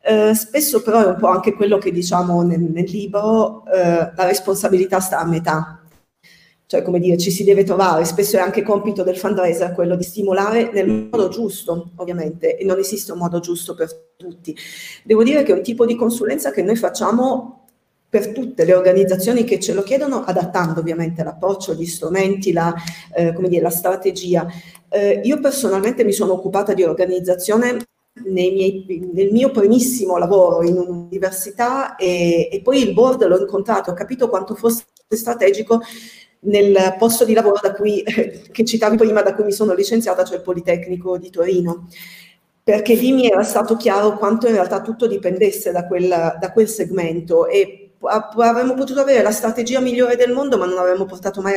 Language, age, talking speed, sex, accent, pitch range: Italian, 40-59, 180 wpm, female, native, 180-225 Hz